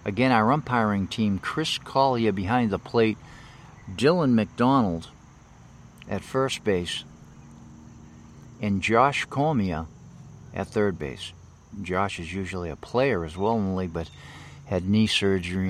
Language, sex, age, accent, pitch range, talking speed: English, male, 50-69, American, 90-120 Hz, 120 wpm